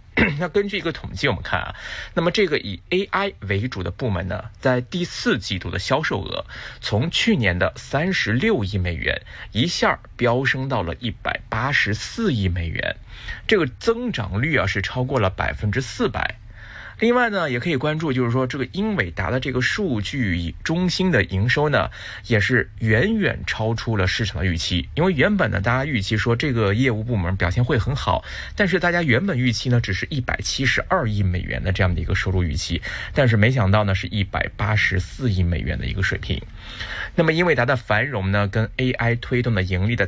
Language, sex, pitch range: Chinese, male, 95-125 Hz